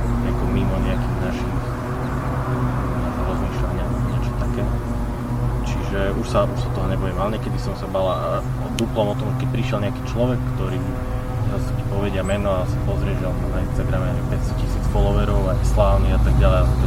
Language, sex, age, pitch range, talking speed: Slovak, male, 20-39, 110-125 Hz, 155 wpm